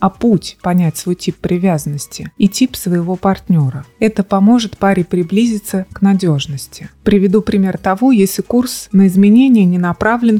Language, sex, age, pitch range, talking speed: Russian, female, 30-49, 180-210 Hz, 145 wpm